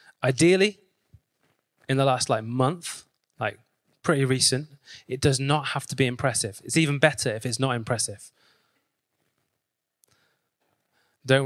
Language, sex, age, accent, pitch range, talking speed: English, male, 20-39, British, 115-145 Hz, 125 wpm